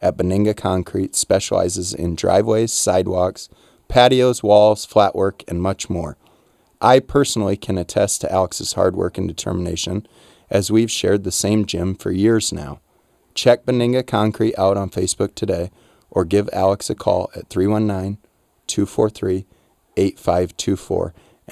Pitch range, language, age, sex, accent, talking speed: 90-110 Hz, English, 30-49, male, American, 130 wpm